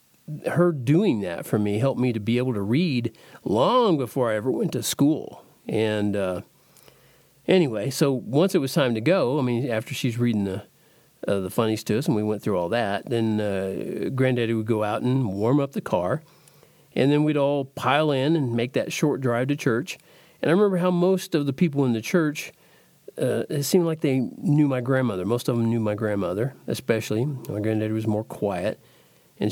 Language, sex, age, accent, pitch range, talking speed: English, male, 50-69, American, 115-145 Hz, 205 wpm